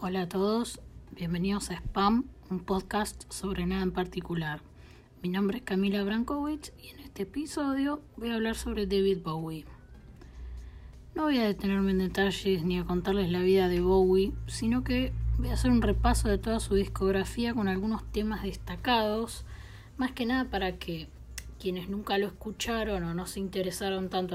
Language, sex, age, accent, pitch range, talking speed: Spanish, female, 20-39, Argentinian, 175-210 Hz, 170 wpm